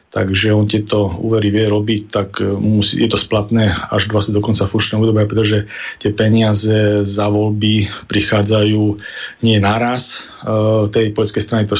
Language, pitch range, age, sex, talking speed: Slovak, 105-110 Hz, 40-59, male, 145 wpm